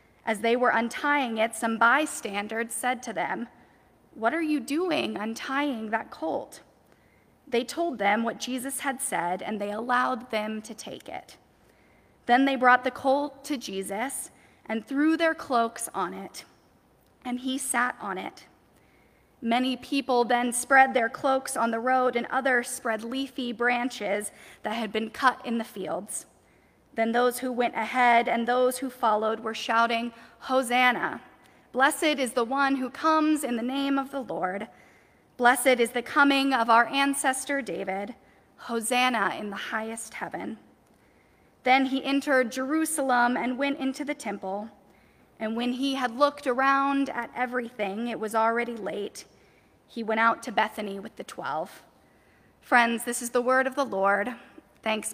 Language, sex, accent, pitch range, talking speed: English, female, American, 225-270 Hz, 160 wpm